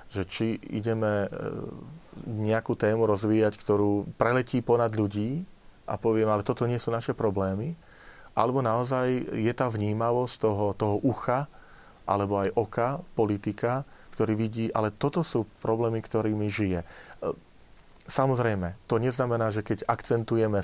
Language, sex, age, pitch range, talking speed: Slovak, male, 30-49, 105-125 Hz, 130 wpm